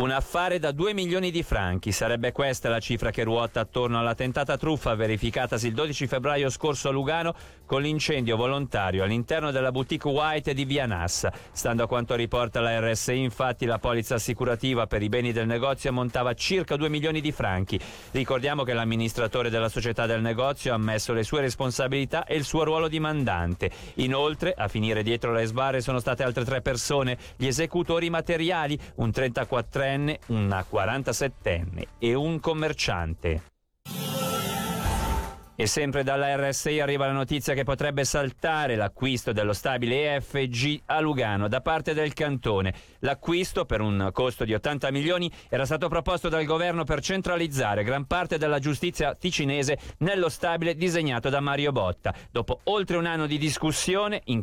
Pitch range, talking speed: 115-150 Hz, 160 wpm